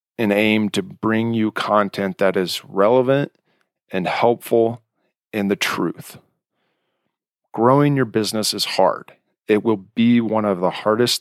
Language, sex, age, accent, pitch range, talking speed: English, male, 40-59, American, 95-115 Hz, 140 wpm